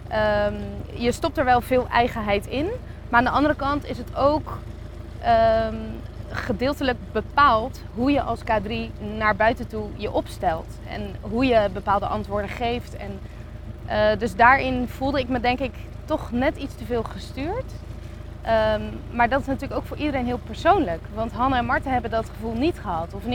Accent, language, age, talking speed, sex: Dutch, Dutch, 20-39, 170 wpm, female